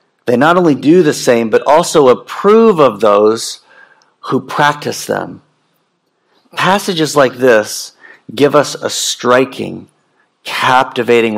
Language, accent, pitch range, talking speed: English, American, 115-145 Hz, 115 wpm